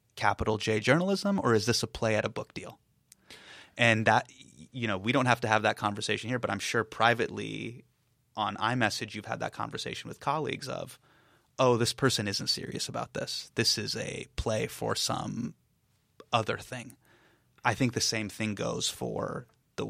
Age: 30-49